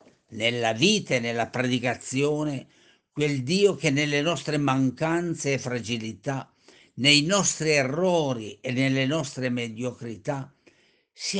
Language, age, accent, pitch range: Italian, 60-79, native, 125-175 Hz